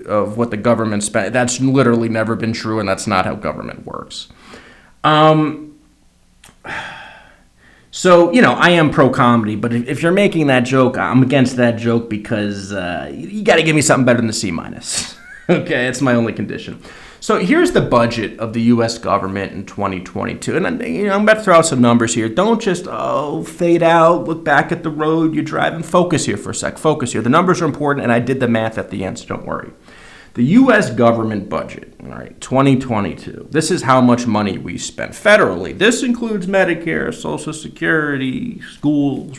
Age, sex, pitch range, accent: 30-49, male, 115-165 Hz, American